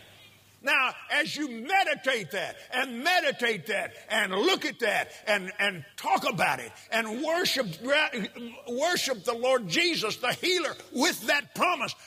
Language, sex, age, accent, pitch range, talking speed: English, male, 50-69, American, 235-280 Hz, 140 wpm